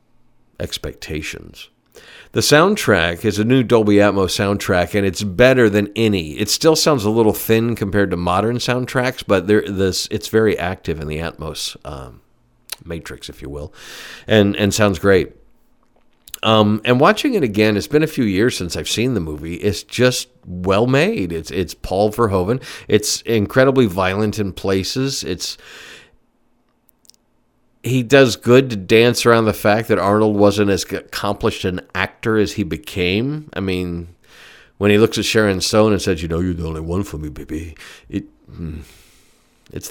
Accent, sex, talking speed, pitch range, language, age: American, male, 160 wpm, 90-115 Hz, English, 50-69